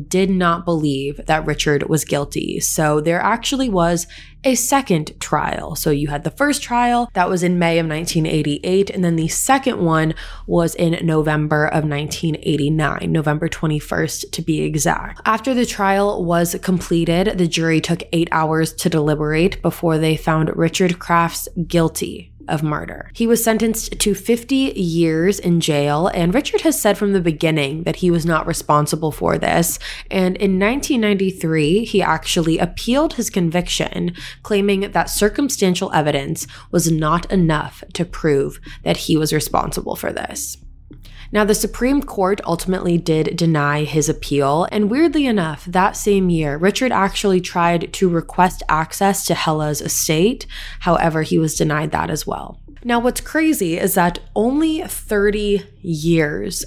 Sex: female